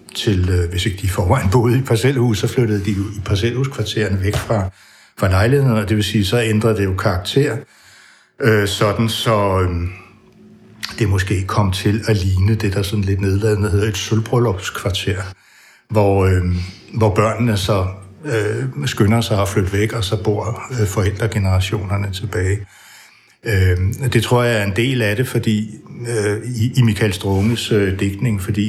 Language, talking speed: Danish, 165 wpm